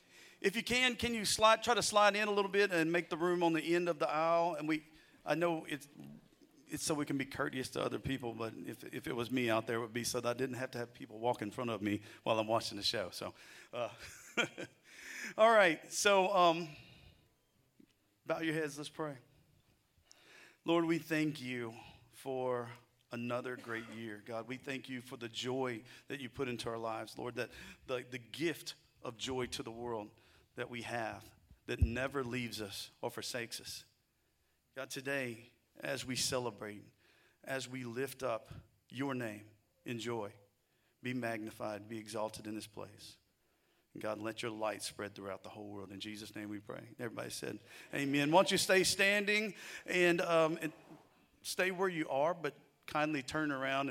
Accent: American